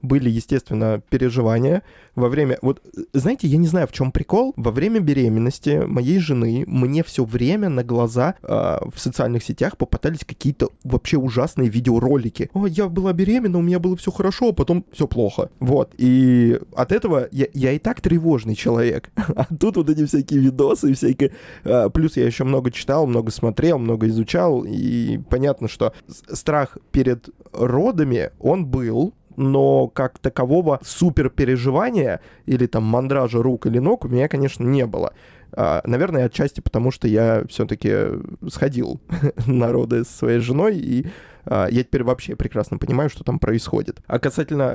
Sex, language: male, Russian